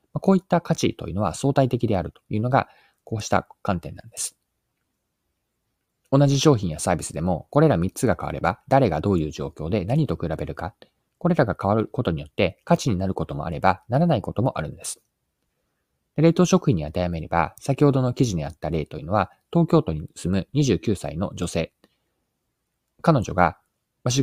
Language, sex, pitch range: Japanese, male, 90-145 Hz